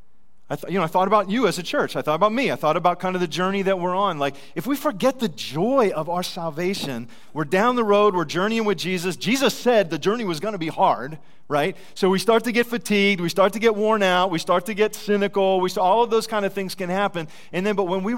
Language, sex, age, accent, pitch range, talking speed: English, male, 40-59, American, 160-225 Hz, 275 wpm